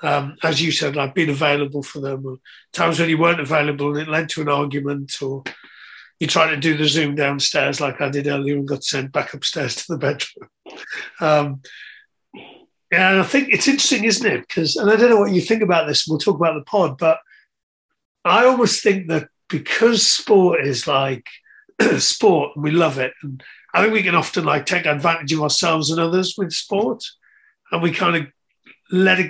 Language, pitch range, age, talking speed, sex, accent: English, 145-195 Hz, 50-69, 200 wpm, male, British